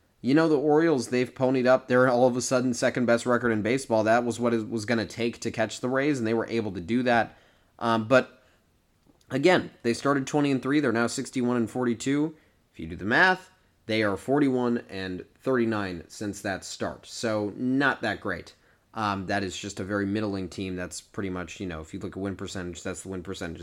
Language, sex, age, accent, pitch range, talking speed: English, male, 30-49, American, 100-130 Hz, 220 wpm